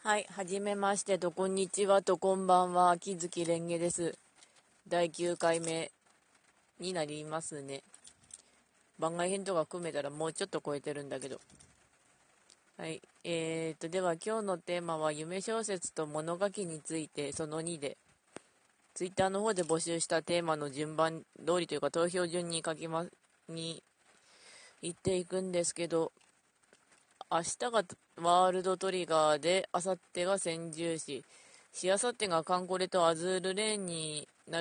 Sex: female